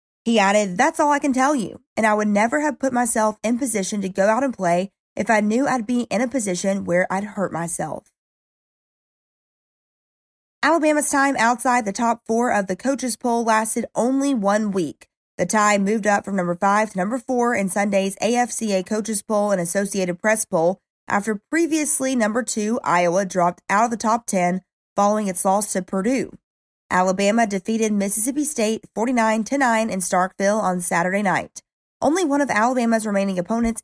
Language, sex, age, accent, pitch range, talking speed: English, female, 20-39, American, 190-245 Hz, 180 wpm